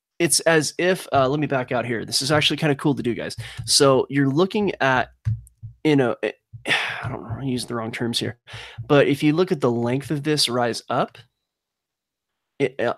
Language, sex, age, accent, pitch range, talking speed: English, male, 30-49, American, 120-145 Hz, 215 wpm